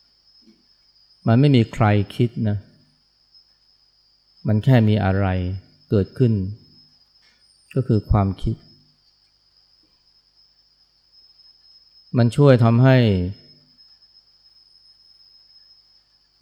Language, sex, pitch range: Thai, male, 100-120 Hz